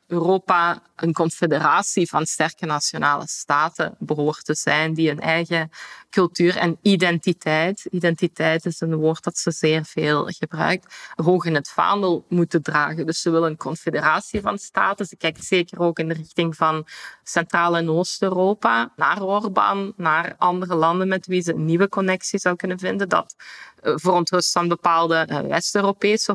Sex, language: female, Dutch